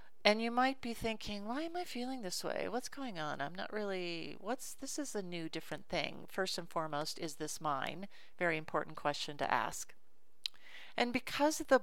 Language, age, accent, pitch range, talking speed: English, 40-59, American, 170-210 Hz, 195 wpm